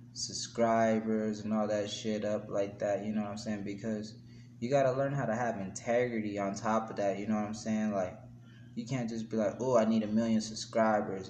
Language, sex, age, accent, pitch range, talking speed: English, male, 20-39, American, 105-120 Hz, 225 wpm